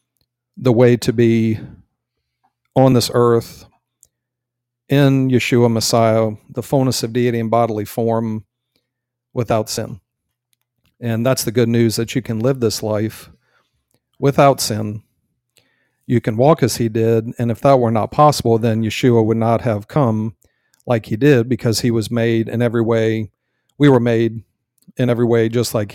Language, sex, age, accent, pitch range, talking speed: English, male, 40-59, American, 110-125 Hz, 155 wpm